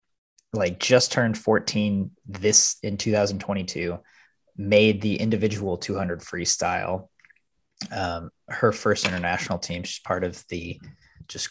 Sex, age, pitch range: male, 20-39, 95-105 Hz